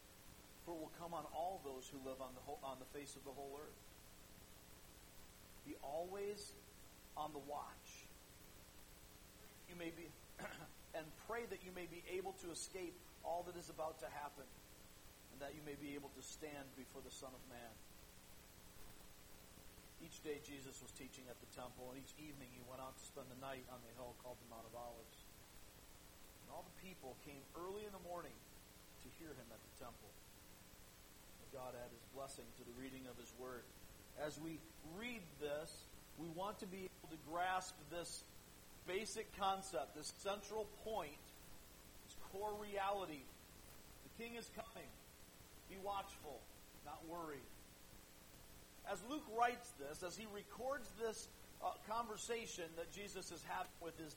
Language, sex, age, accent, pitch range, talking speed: English, male, 40-59, American, 125-190 Hz, 165 wpm